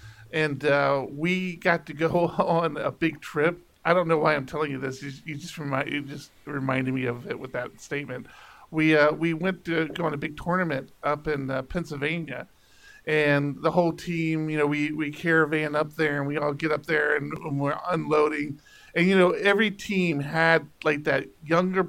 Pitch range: 145-180 Hz